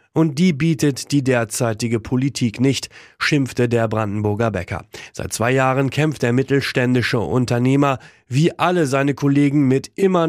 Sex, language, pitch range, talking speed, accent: male, German, 115-150 Hz, 140 wpm, German